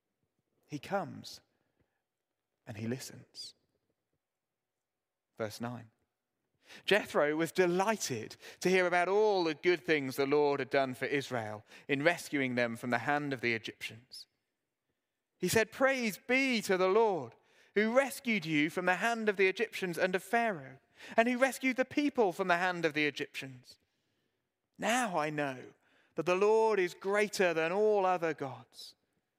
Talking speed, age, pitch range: 150 wpm, 30-49, 140-205 Hz